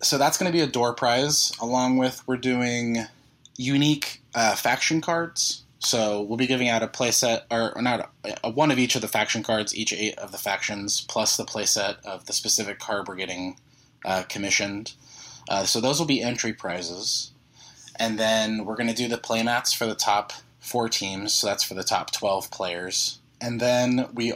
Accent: American